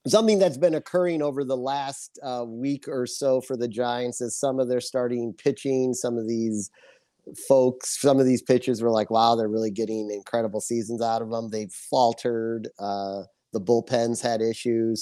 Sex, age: male, 30-49